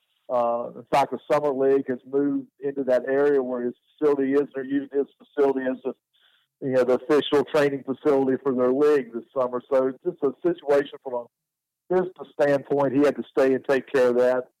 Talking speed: 205 wpm